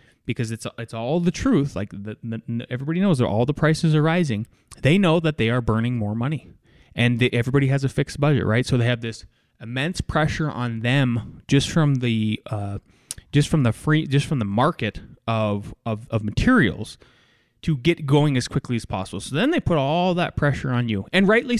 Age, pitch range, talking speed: 20-39, 115-150 Hz, 210 wpm